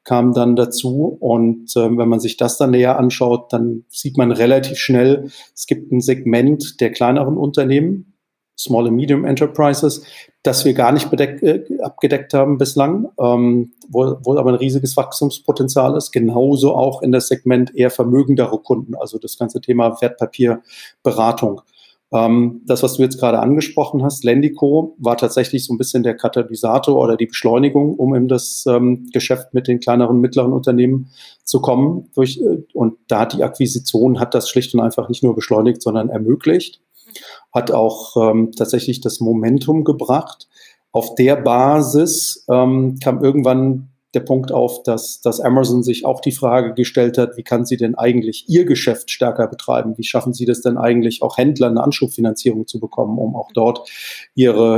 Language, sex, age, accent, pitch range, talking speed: German, male, 40-59, German, 120-130 Hz, 165 wpm